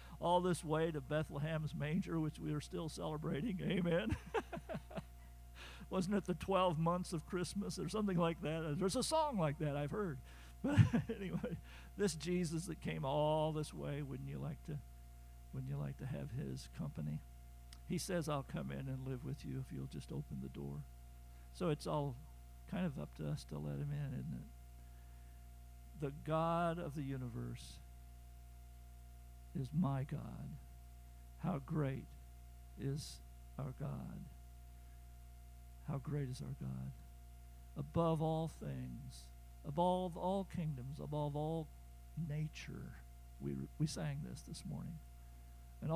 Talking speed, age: 150 wpm, 50-69